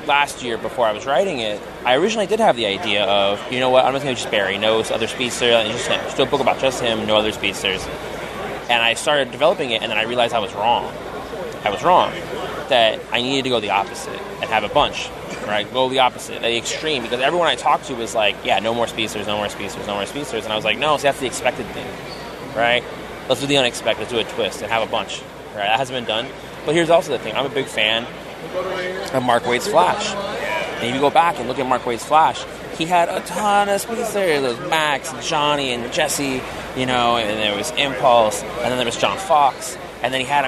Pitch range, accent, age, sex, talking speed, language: 110-135 Hz, American, 20-39, male, 250 wpm, English